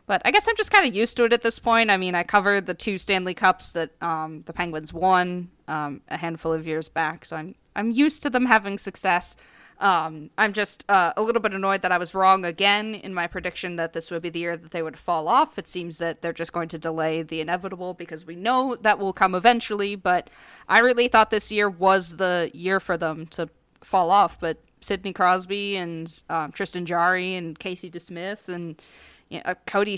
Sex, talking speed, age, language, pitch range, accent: female, 220 wpm, 20-39, English, 165-205 Hz, American